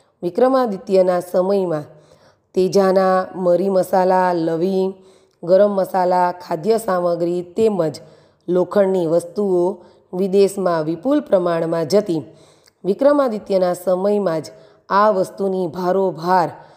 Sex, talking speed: female, 80 wpm